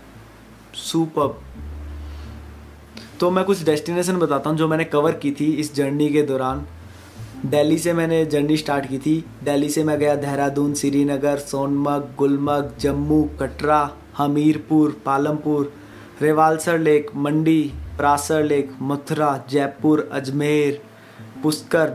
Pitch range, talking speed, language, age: 130-150 Hz, 120 wpm, Hindi, 20-39